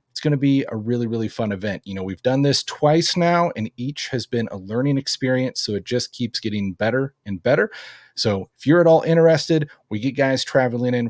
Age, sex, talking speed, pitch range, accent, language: 30-49, male, 225 wpm, 110-140 Hz, American, English